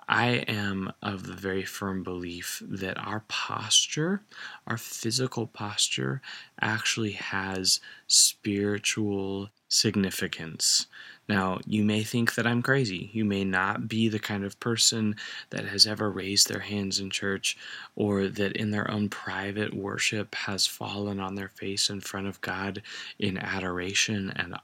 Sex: male